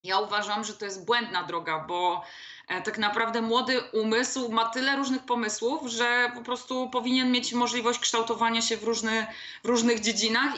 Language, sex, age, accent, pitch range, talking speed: Polish, female, 20-39, native, 200-240 Hz, 160 wpm